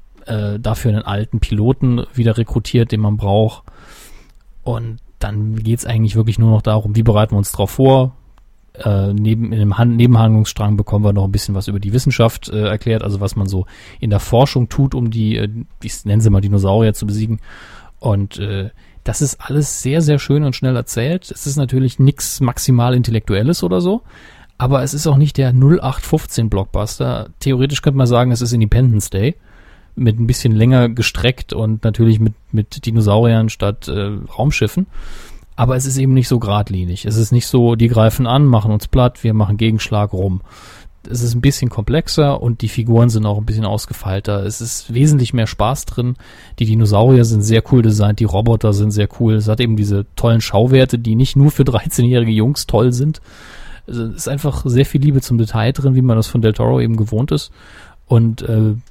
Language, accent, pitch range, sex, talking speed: German, German, 105-125 Hz, male, 195 wpm